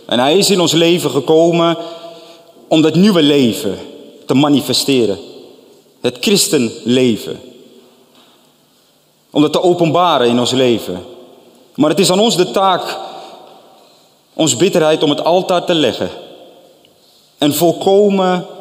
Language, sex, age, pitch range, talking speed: Dutch, male, 30-49, 125-165 Hz, 125 wpm